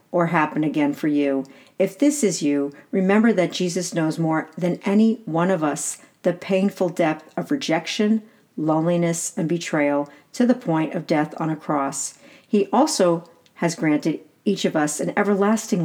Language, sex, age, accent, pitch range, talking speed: English, female, 50-69, American, 155-205 Hz, 165 wpm